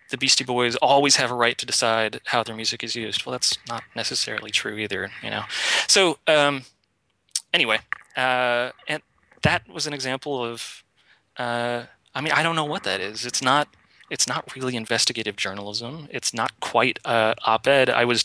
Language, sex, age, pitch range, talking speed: English, male, 30-49, 110-125 Hz, 175 wpm